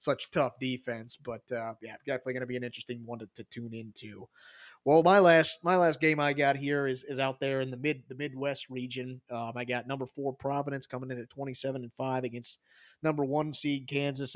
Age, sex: 30-49, male